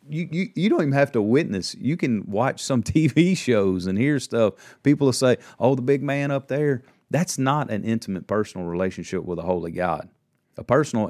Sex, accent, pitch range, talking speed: male, American, 95-115 Hz, 205 wpm